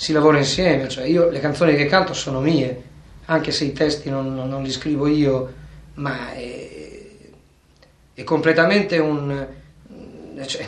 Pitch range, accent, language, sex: 135-160 Hz, native, Italian, male